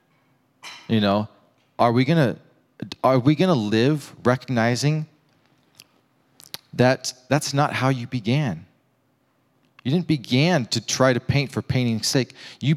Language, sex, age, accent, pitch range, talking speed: English, male, 30-49, American, 105-130 Hz, 115 wpm